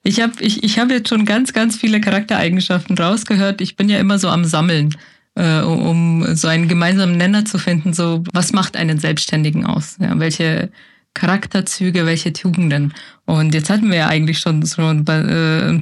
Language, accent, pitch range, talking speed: German, German, 170-210 Hz, 180 wpm